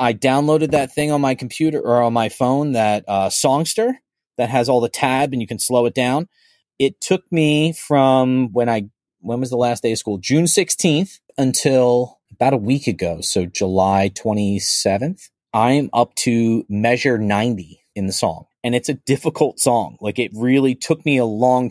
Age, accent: 30-49, American